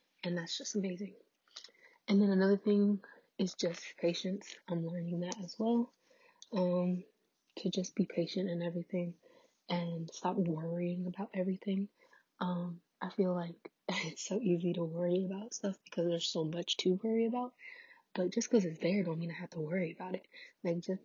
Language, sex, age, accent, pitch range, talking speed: English, female, 20-39, American, 175-210 Hz, 175 wpm